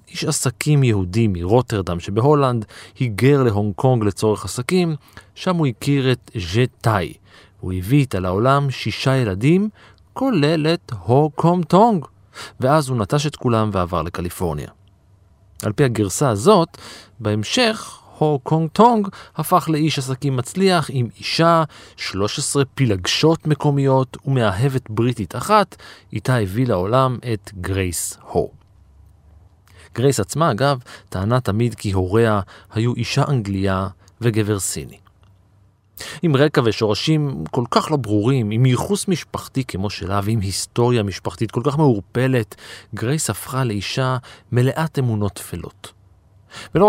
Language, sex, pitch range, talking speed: Hebrew, male, 100-145 Hz, 120 wpm